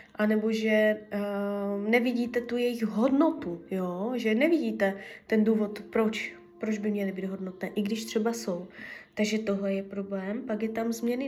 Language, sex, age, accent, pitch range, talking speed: Czech, female, 20-39, native, 215-245 Hz, 150 wpm